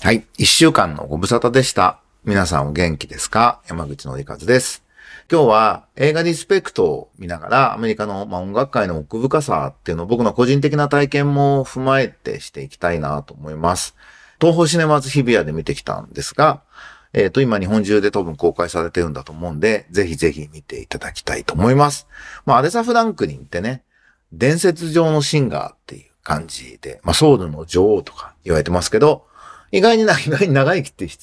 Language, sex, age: Japanese, male, 40-59